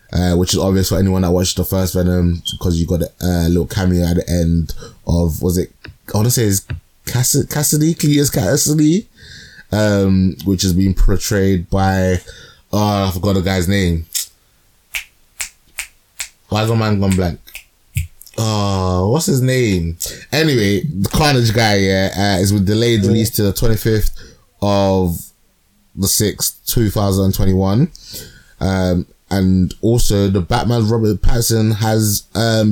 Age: 20-39